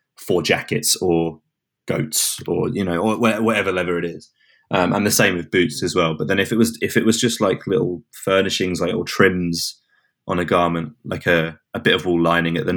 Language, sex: English, male